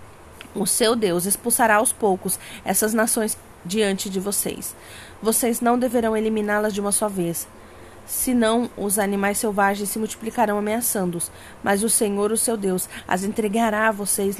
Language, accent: Portuguese, Brazilian